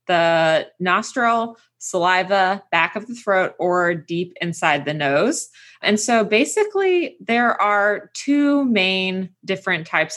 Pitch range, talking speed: 160-205 Hz, 125 wpm